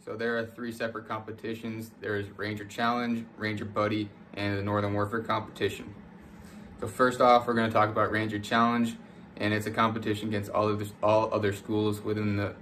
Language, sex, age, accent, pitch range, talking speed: English, male, 20-39, American, 105-115 Hz, 185 wpm